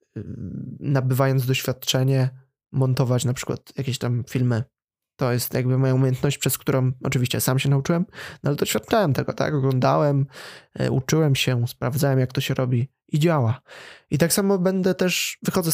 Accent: native